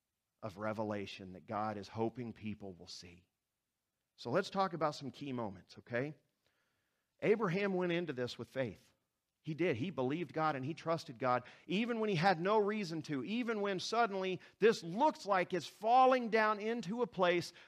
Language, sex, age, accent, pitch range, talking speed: English, male, 50-69, American, 125-190 Hz, 175 wpm